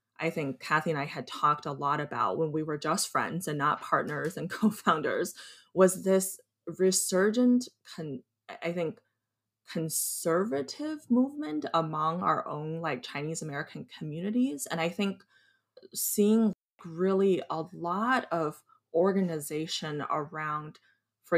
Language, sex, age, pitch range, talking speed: English, female, 20-39, 150-195 Hz, 130 wpm